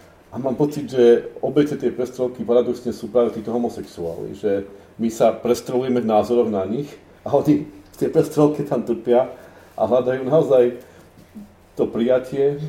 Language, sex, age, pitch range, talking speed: Slovak, male, 40-59, 105-125 Hz, 150 wpm